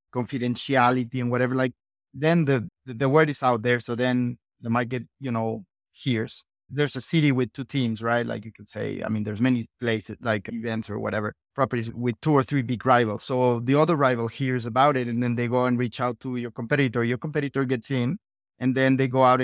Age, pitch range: 30-49, 115-140 Hz